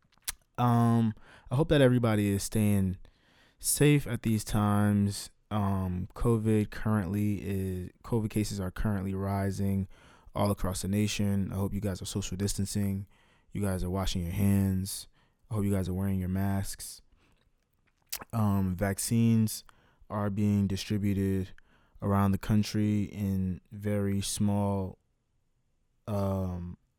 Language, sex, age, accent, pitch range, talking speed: English, male, 20-39, American, 95-105 Hz, 125 wpm